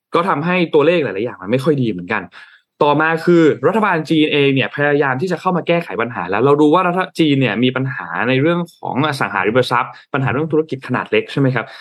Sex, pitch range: male, 125-165 Hz